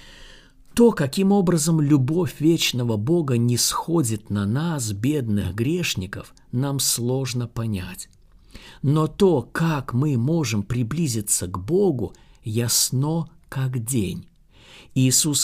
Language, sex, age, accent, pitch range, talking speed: Russian, male, 50-69, native, 105-145 Hz, 105 wpm